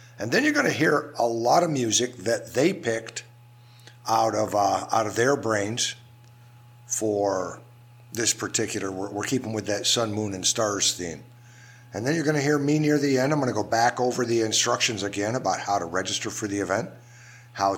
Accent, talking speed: American, 195 wpm